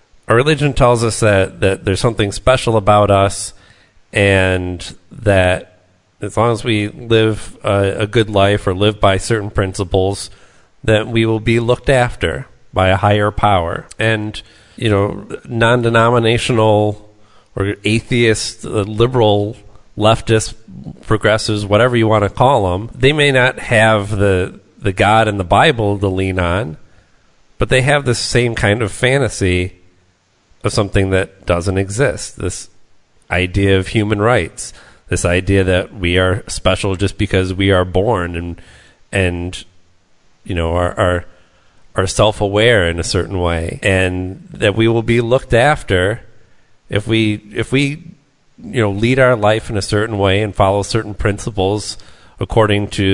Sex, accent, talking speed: male, American, 150 wpm